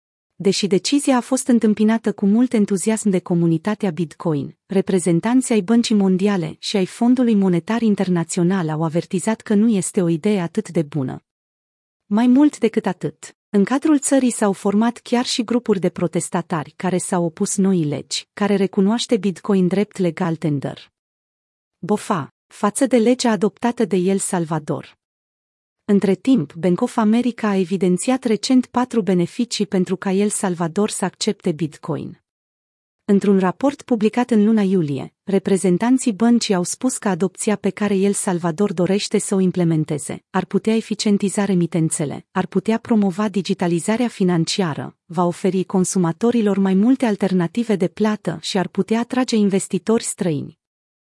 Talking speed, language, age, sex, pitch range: 145 wpm, Romanian, 30-49, female, 180-220 Hz